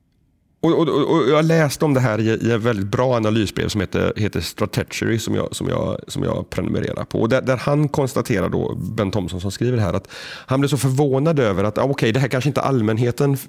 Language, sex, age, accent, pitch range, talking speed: Swedish, male, 30-49, native, 110-145 Hz, 225 wpm